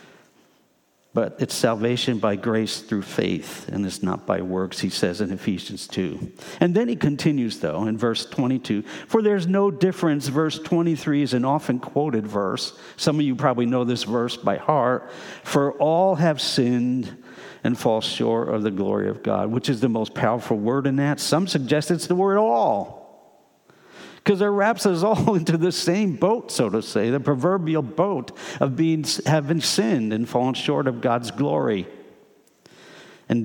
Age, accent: 50-69, American